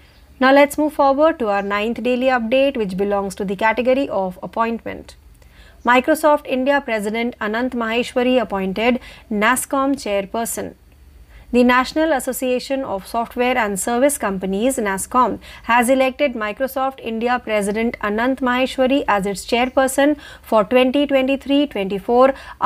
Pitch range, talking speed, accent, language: 210-265 Hz, 120 wpm, native, Marathi